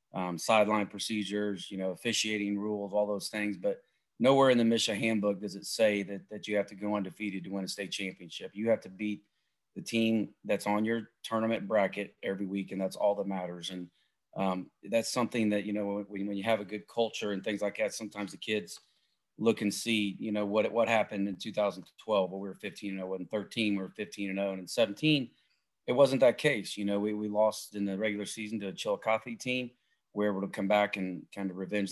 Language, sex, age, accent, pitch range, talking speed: English, male, 30-49, American, 100-110 Hz, 230 wpm